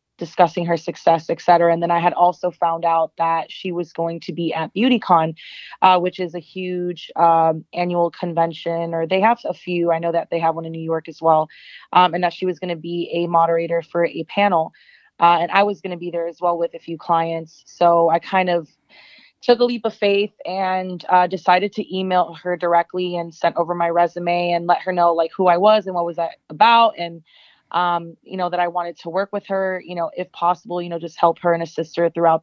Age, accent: 20-39, American